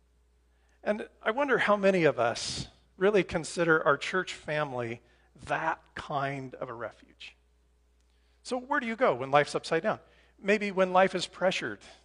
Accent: American